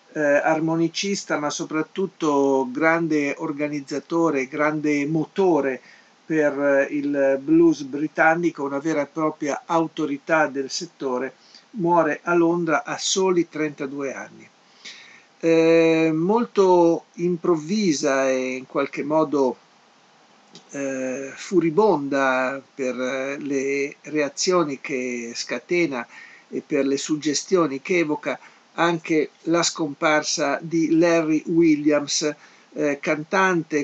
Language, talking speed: Italian, 100 wpm